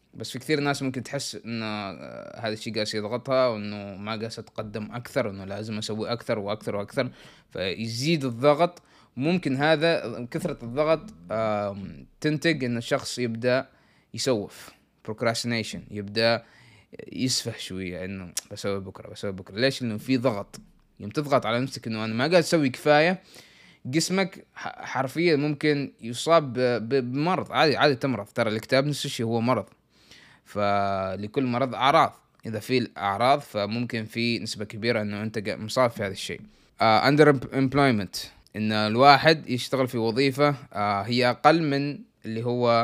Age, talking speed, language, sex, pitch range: 20-39, 145 wpm, Arabic, male, 105-135 Hz